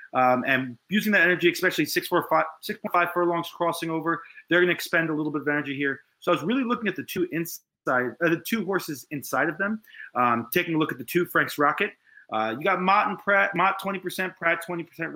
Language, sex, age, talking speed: English, male, 30-49, 220 wpm